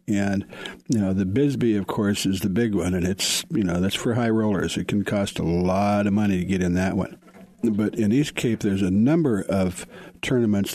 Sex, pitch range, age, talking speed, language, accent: male, 95-115 Hz, 60-79, 225 wpm, English, American